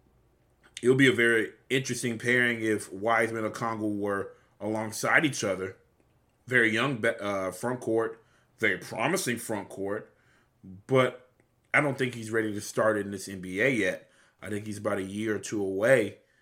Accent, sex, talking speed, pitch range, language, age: American, male, 160 wpm, 105-125 Hz, English, 20-39